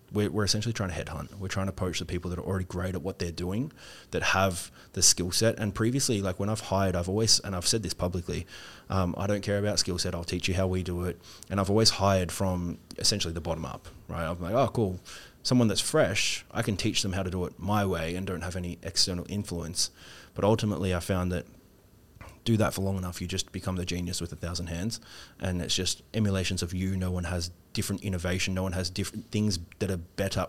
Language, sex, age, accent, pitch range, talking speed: English, male, 20-39, Australian, 90-100 Hz, 240 wpm